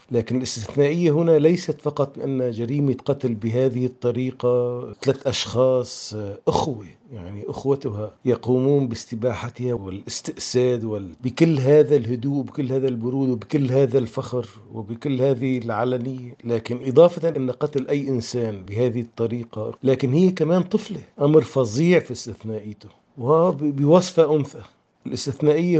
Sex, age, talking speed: male, 50-69, 115 wpm